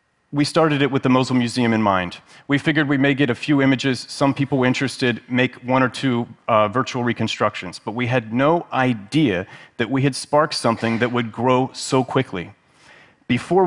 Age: 30-49